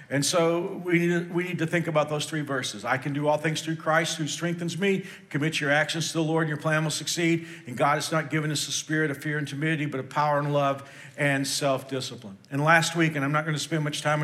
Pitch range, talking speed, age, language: 140-165 Hz, 255 wpm, 50-69, English